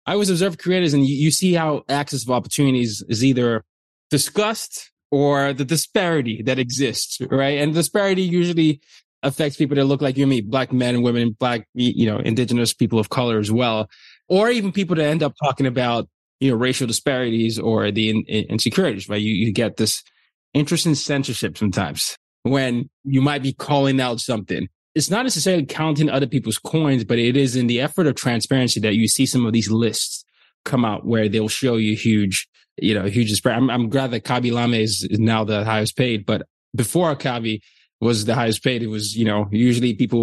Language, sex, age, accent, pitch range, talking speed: English, male, 20-39, American, 110-140 Hz, 195 wpm